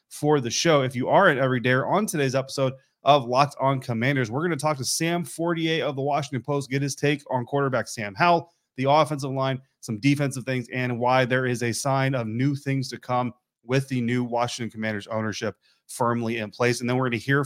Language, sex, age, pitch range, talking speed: English, male, 30-49, 115-135 Hz, 230 wpm